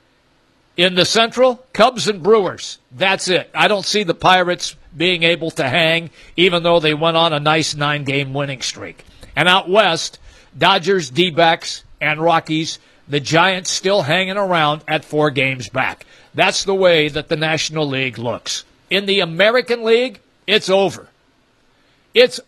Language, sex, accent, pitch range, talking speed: English, male, American, 160-210 Hz, 155 wpm